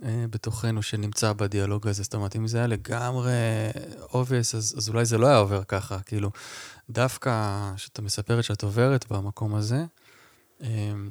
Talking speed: 150 wpm